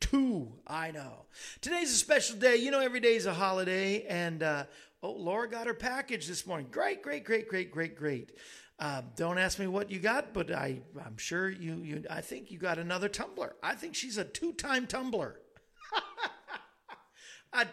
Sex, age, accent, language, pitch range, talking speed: male, 50-69, American, English, 160-235 Hz, 185 wpm